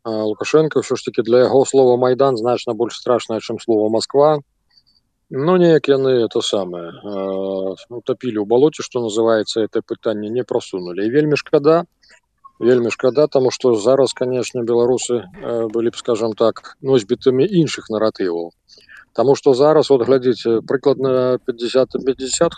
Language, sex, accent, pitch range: Ukrainian, male, native, 110-135 Hz